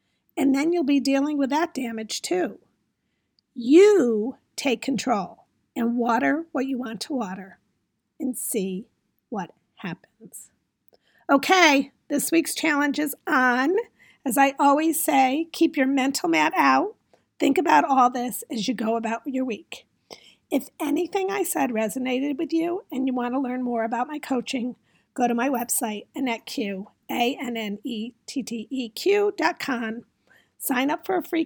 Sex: female